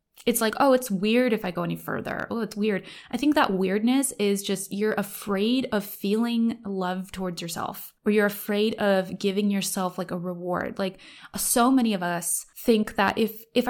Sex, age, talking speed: female, 20-39, 195 wpm